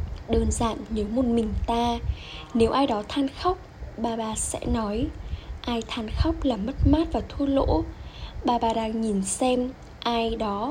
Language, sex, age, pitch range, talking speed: Vietnamese, female, 10-29, 210-260 Hz, 175 wpm